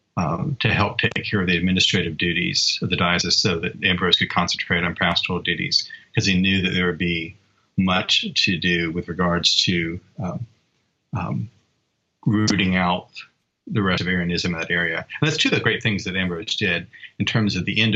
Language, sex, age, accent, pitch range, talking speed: English, male, 40-59, American, 90-110 Hz, 195 wpm